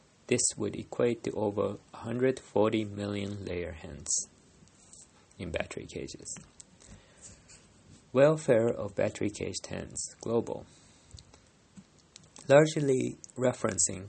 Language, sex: Japanese, male